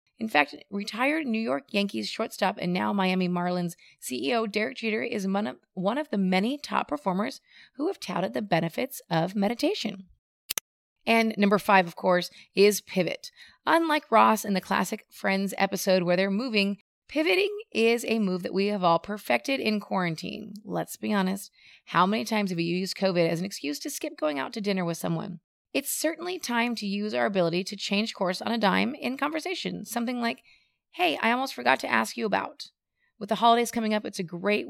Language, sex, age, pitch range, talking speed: English, female, 30-49, 185-250 Hz, 190 wpm